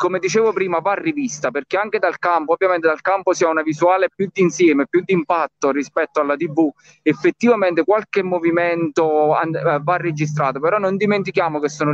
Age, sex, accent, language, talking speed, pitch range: 30-49, male, Italian, English, 170 wpm, 155-185 Hz